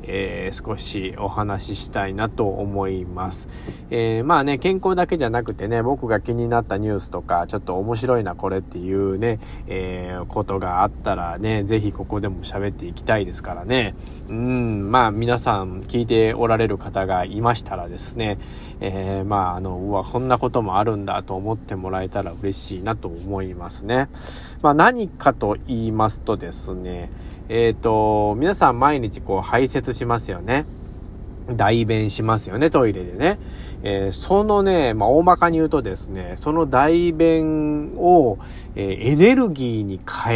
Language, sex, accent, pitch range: Japanese, male, native, 95-125 Hz